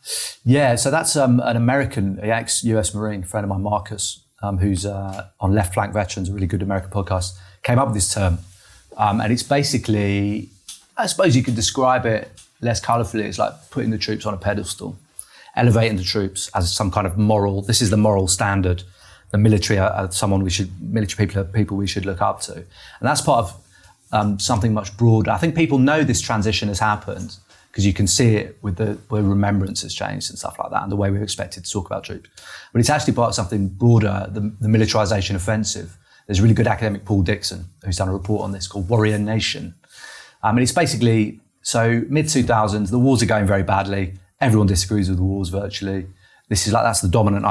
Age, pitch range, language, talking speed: 30-49, 95-115 Hz, English, 215 wpm